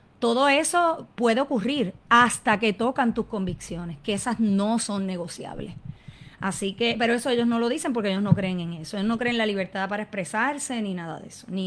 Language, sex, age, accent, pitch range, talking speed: Spanish, female, 30-49, American, 195-255 Hz, 210 wpm